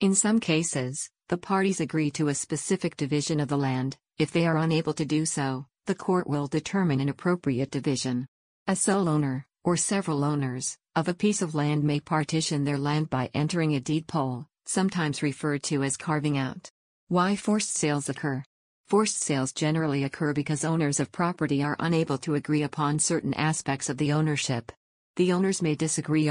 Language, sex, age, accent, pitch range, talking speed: English, female, 50-69, American, 145-165 Hz, 180 wpm